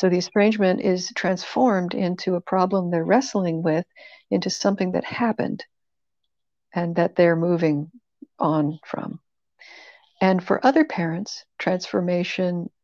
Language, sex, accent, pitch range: English, female, American, 175-215 Hz